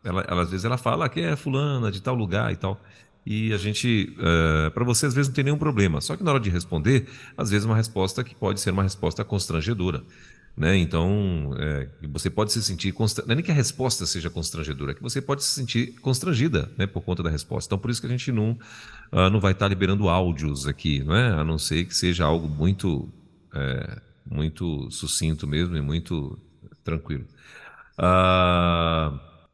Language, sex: Portuguese, male